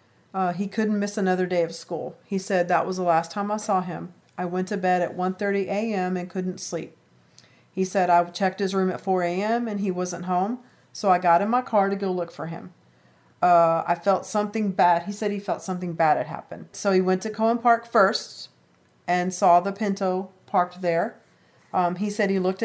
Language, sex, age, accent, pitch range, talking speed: English, female, 40-59, American, 175-200 Hz, 220 wpm